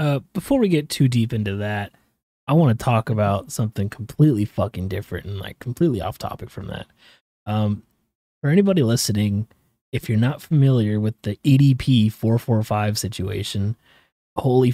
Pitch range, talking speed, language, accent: 115-145 Hz, 155 wpm, English, American